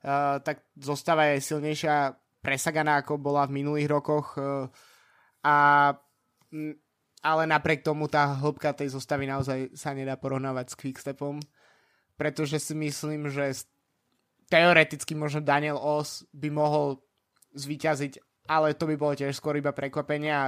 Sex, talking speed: male, 125 wpm